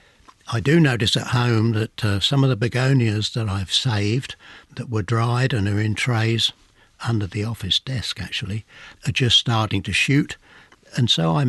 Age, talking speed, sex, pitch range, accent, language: 60-79, 180 wpm, male, 100-120 Hz, British, English